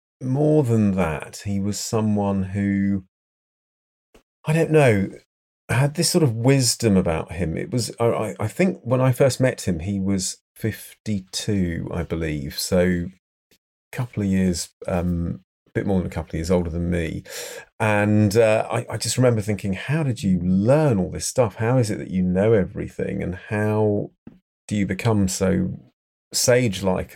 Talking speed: 170 wpm